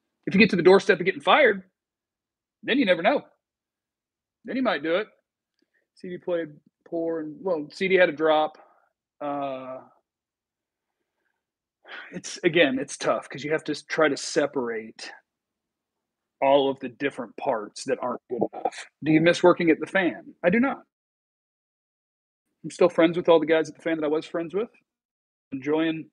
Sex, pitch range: male, 155-240 Hz